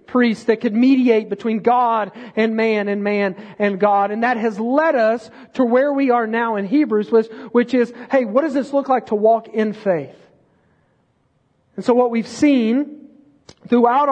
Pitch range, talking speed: 210-255 Hz, 180 wpm